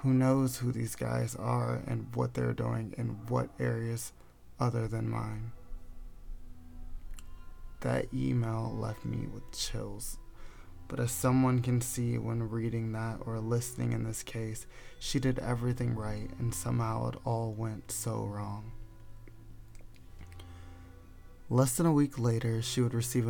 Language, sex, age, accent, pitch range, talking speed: English, male, 20-39, American, 110-120 Hz, 140 wpm